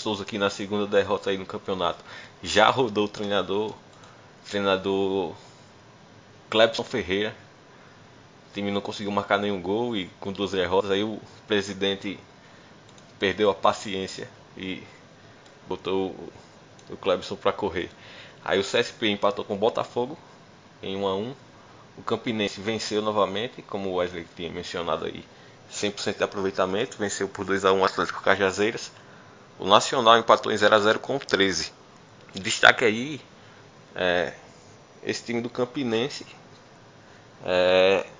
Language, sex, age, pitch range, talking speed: Portuguese, male, 20-39, 95-120 Hz, 130 wpm